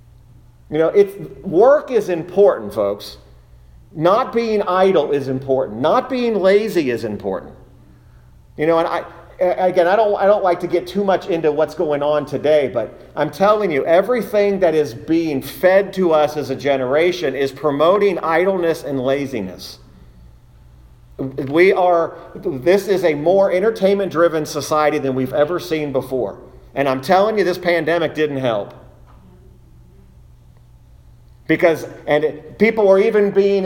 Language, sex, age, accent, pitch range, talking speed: English, male, 40-59, American, 135-205 Hz, 145 wpm